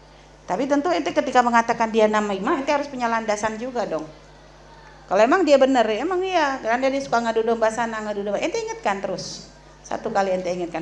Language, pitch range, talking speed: Indonesian, 210-270 Hz, 195 wpm